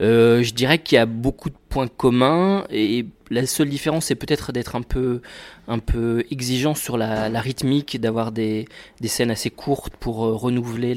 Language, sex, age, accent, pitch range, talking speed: French, male, 20-39, French, 115-135 Hz, 190 wpm